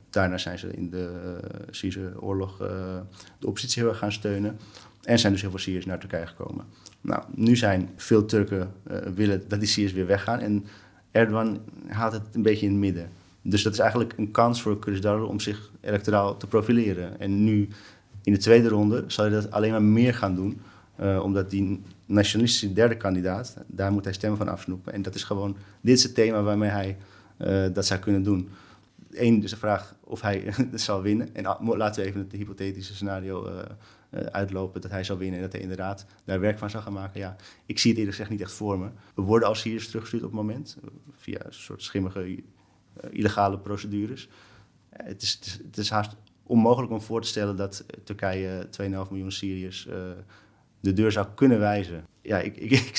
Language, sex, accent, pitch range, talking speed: Dutch, male, Dutch, 95-110 Hz, 215 wpm